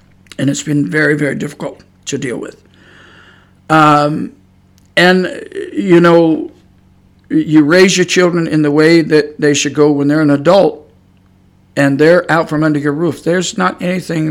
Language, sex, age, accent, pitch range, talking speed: English, male, 50-69, American, 130-165 Hz, 160 wpm